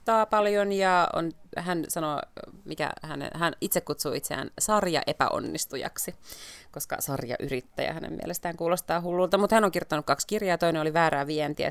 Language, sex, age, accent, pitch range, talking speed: Finnish, female, 30-49, native, 145-180 Hz, 150 wpm